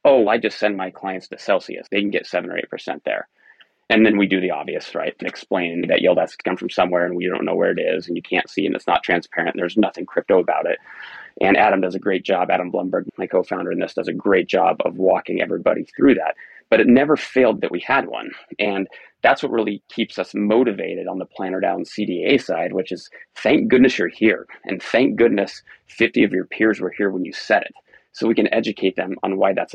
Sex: male